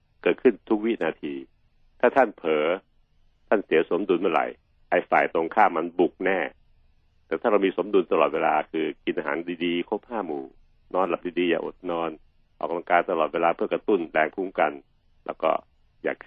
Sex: male